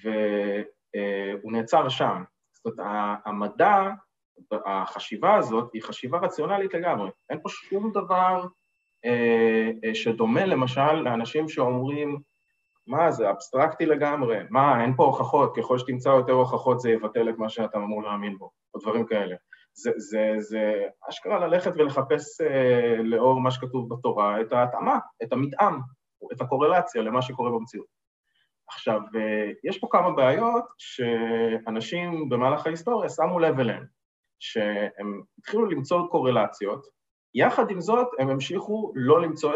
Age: 20-39